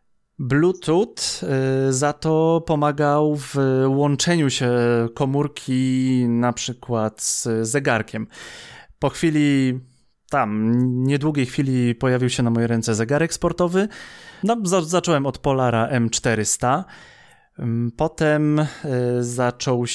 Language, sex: Polish, male